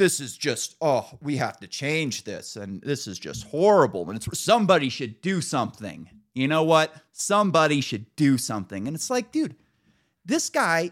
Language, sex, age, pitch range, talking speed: English, male, 30-49, 125-210 Hz, 180 wpm